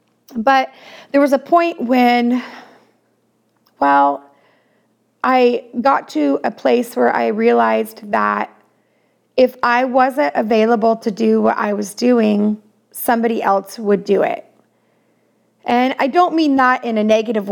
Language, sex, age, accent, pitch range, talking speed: English, female, 30-49, American, 215-250 Hz, 135 wpm